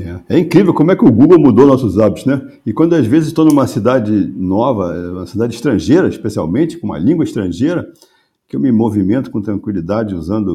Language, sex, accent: Portuguese, male, Brazilian